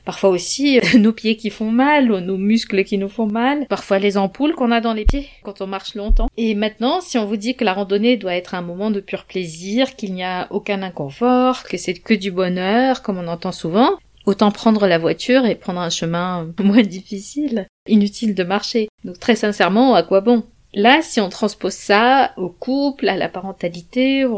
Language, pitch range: French, 195-240 Hz